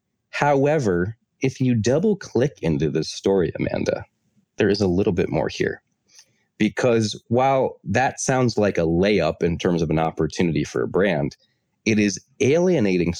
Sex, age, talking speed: male, 30-49, 155 wpm